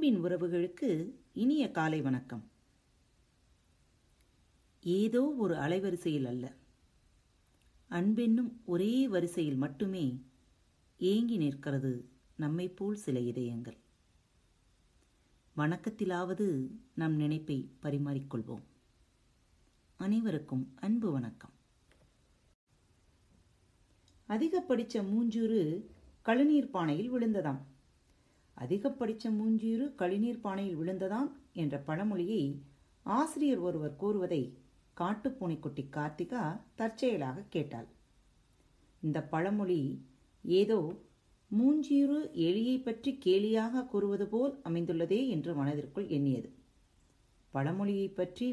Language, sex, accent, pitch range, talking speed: Tamil, female, native, 135-220 Hz, 75 wpm